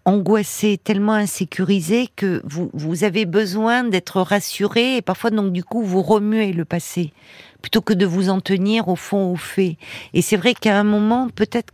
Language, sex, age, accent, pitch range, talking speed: French, female, 50-69, French, 170-210 Hz, 185 wpm